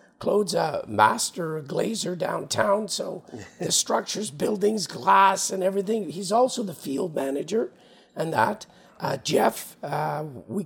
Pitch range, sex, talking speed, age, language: 180-210 Hz, male, 130 wpm, 50-69, English